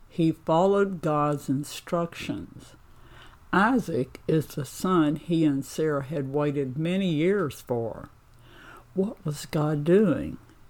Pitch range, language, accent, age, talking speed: 125-160 Hz, English, American, 60-79, 110 wpm